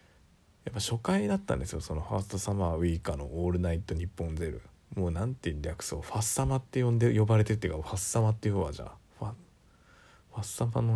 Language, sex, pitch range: Japanese, male, 85-110 Hz